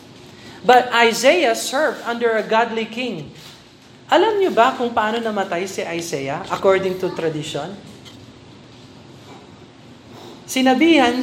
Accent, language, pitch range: native, Filipino, 160-245 Hz